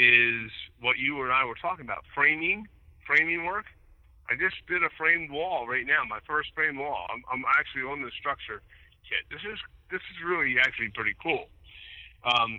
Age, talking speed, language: 50-69, 190 wpm, English